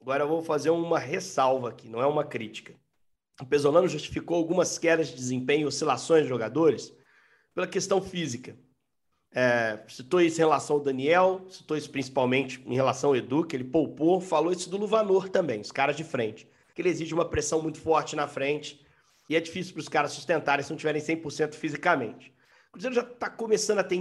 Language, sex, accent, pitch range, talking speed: Portuguese, male, Brazilian, 135-175 Hz, 195 wpm